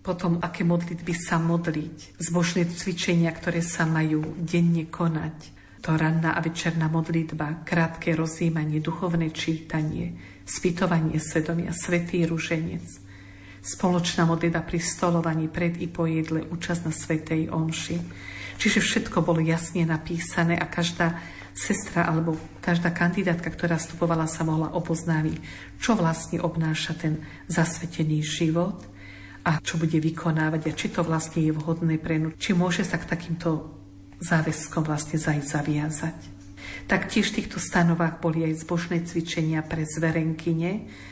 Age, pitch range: 50-69, 155-170 Hz